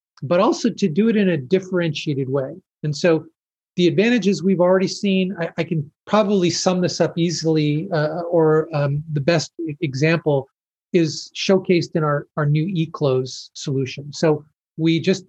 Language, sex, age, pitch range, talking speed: English, male, 40-59, 150-190 Hz, 160 wpm